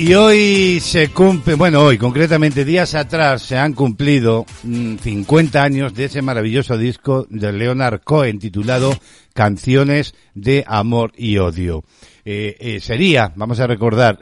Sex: male